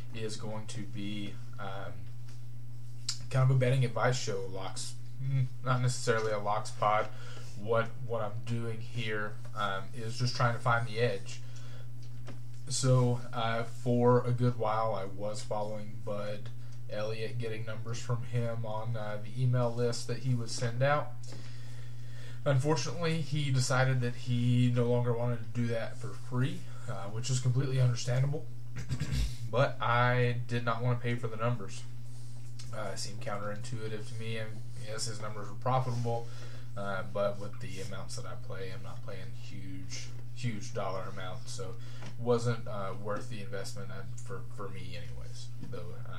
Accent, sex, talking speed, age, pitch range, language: American, male, 160 wpm, 20-39, 115-120 Hz, English